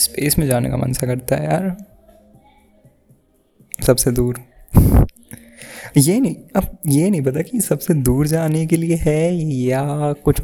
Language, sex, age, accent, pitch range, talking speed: Hindi, male, 20-39, native, 125-160 Hz, 150 wpm